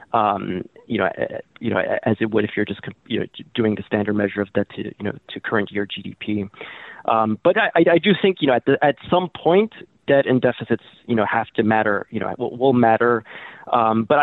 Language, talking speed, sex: English, 230 wpm, male